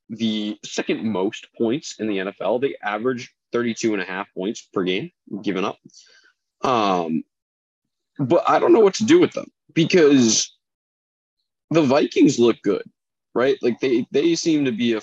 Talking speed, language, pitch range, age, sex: 165 wpm, English, 100-140 Hz, 20-39, male